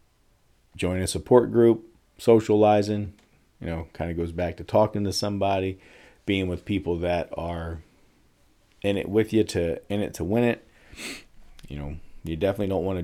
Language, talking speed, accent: English, 160 wpm, American